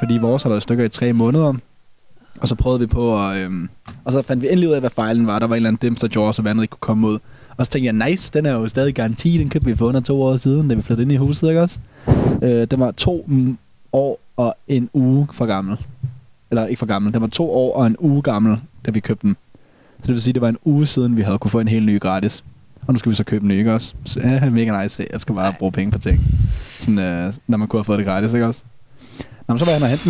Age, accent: 20-39, native